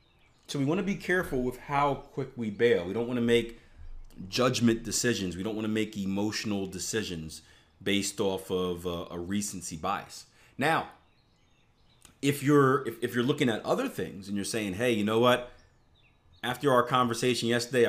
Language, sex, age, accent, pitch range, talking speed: English, male, 30-49, American, 100-120 Hz, 175 wpm